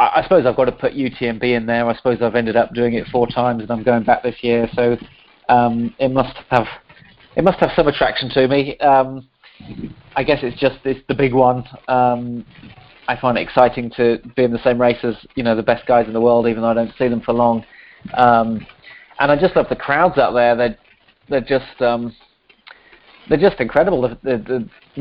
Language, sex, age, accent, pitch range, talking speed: English, male, 30-49, British, 115-130 Hz, 225 wpm